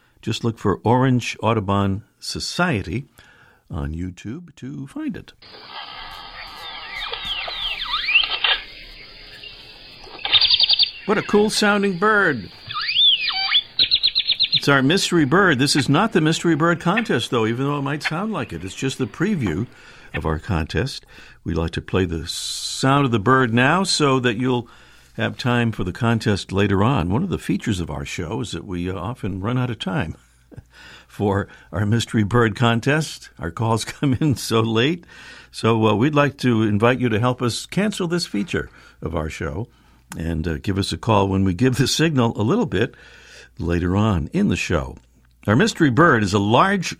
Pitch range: 95-150 Hz